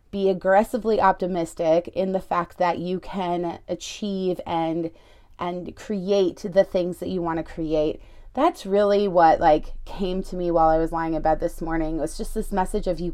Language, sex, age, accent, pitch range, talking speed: English, female, 30-49, American, 165-205 Hz, 190 wpm